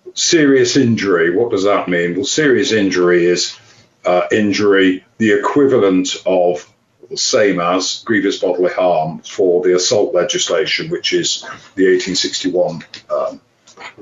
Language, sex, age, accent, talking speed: English, male, 50-69, British, 125 wpm